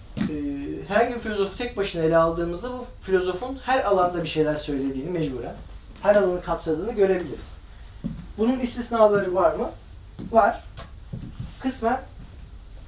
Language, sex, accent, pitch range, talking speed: Turkish, male, native, 135-195 Hz, 120 wpm